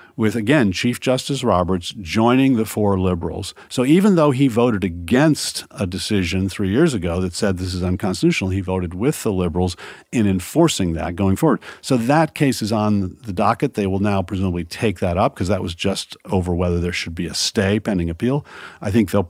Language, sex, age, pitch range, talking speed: English, male, 50-69, 90-120 Hz, 200 wpm